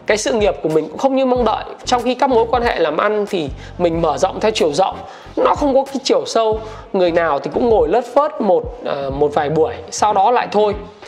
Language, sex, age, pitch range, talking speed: Vietnamese, male, 20-39, 155-230 Hz, 250 wpm